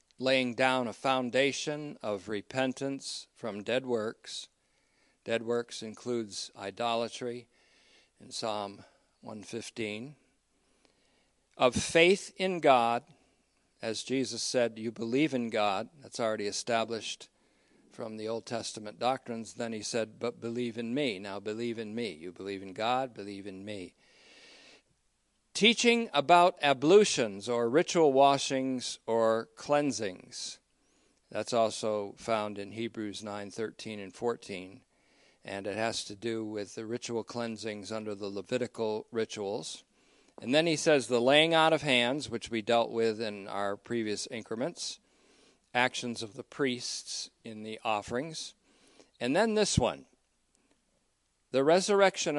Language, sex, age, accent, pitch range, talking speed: English, male, 50-69, American, 110-130 Hz, 130 wpm